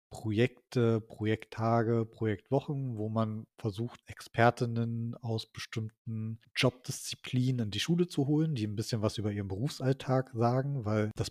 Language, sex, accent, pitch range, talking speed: German, male, German, 110-125 Hz, 135 wpm